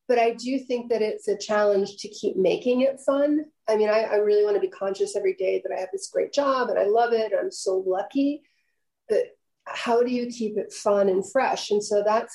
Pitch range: 200-280 Hz